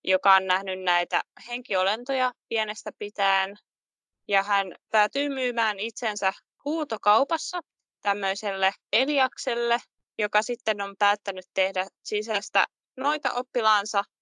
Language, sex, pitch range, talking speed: Finnish, female, 185-240 Hz, 95 wpm